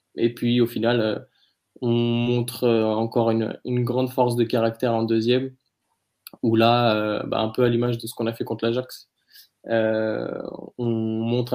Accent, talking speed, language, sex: French, 180 wpm, French, male